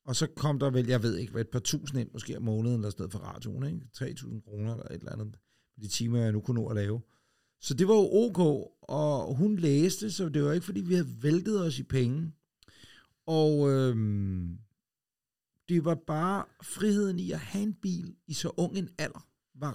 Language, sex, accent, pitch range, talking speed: Danish, male, native, 115-155 Hz, 220 wpm